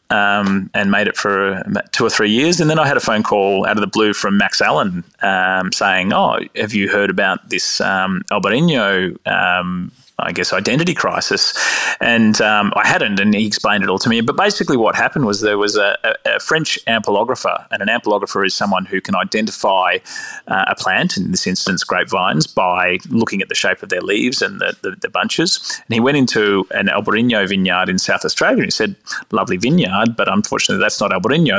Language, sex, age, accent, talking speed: English, male, 20-39, Australian, 210 wpm